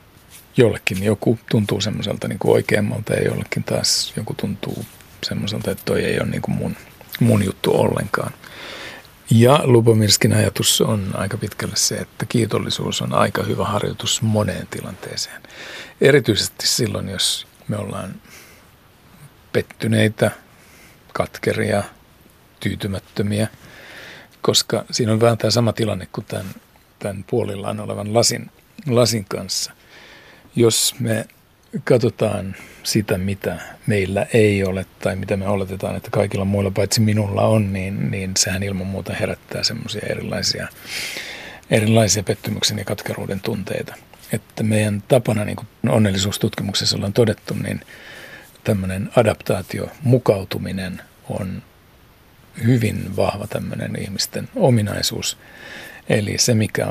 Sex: male